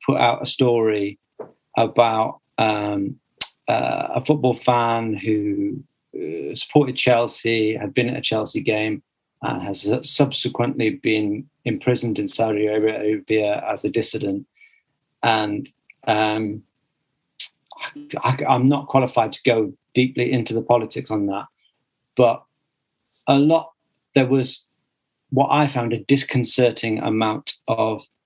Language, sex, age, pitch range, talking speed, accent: English, male, 40-59, 110-140 Hz, 115 wpm, British